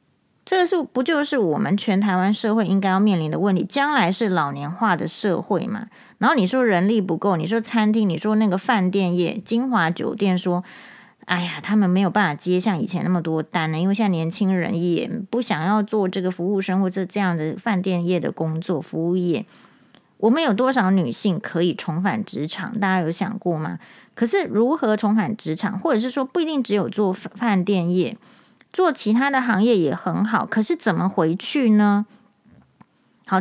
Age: 30-49